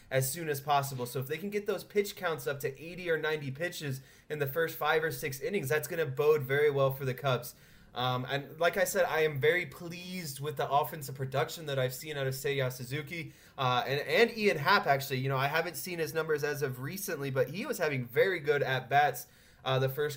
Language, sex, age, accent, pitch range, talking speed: English, male, 20-39, American, 135-155 Hz, 240 wpm